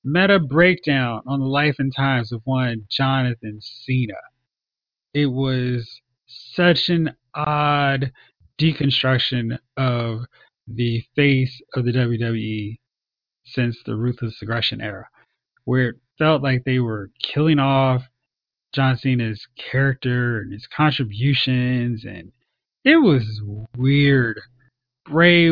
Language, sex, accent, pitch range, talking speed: English, male, American, 120-145 Hz, 110 wpm